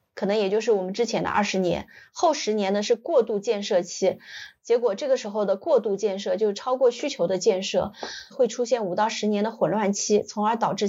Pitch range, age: 205-265 Hz, 20-39